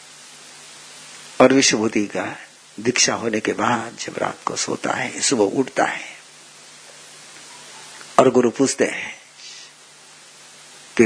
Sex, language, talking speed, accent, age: male, Hindi, 105 wpm, native, 60-79